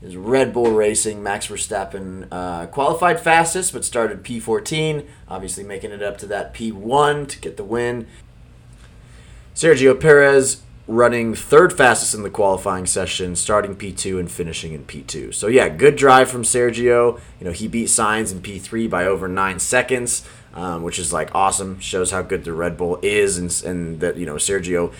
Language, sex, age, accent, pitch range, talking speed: English, male, 20-39, American, 95-120 Hz, 175 wpm